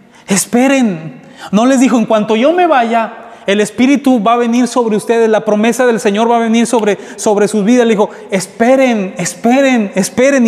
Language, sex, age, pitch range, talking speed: Spanish, male, 30-49, 215-250 Hz, 185 wpm